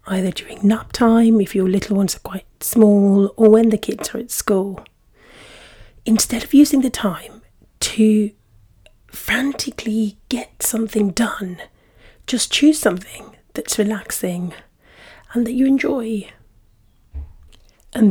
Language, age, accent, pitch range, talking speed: English, 30-49, British, 185-230 Hz, 125 wpm